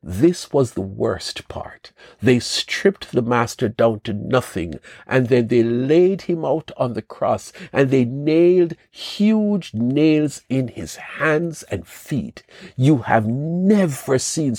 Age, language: 60-79, English